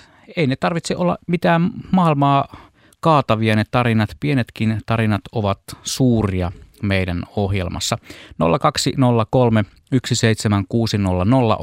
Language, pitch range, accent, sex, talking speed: Finnish, 100-125 Hz, native, male, 85 wpm